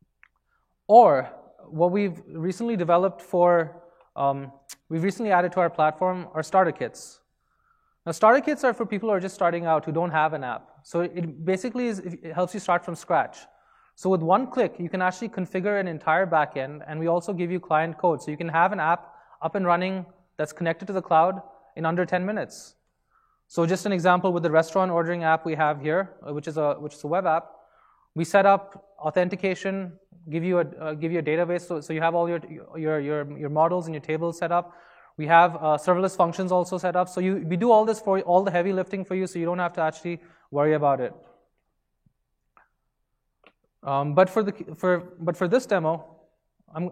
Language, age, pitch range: English, 20-39, 155-185 Hz